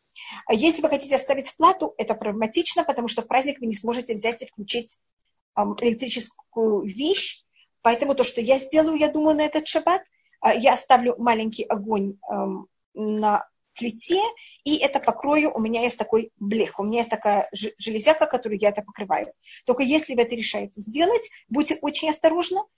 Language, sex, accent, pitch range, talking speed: Russian, female, native, 220-290 Hz, 160 wpm